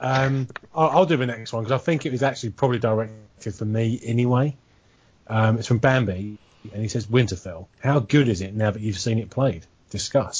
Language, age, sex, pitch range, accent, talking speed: English, 30-49, male, 100-125 Hz, British, 210 wpm